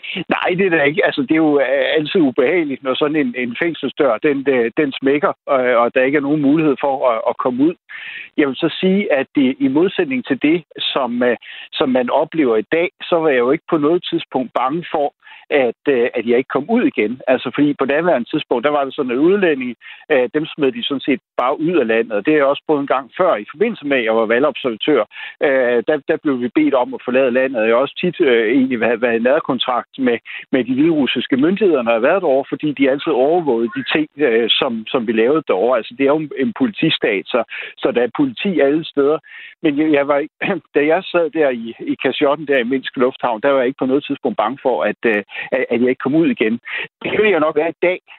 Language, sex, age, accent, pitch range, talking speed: Danish, male, 60-79, native, 135-205 Hz, 230 wpm